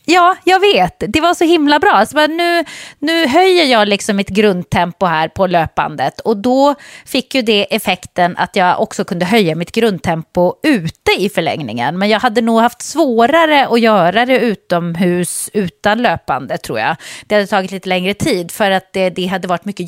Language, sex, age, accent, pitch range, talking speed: English, female, 30-49, Swedish, 190-250 Hz, 180 wpm